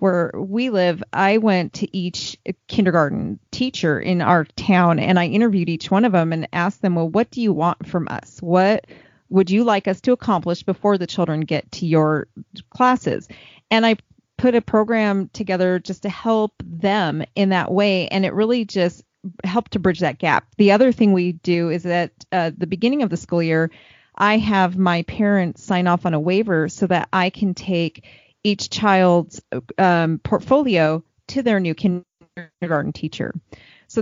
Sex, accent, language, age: female, American, English, 30-49